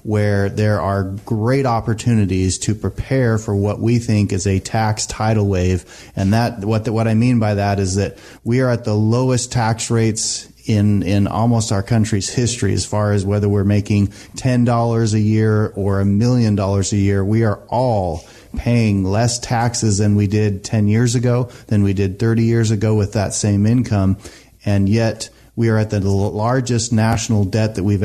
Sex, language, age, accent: male, English, 30-49, American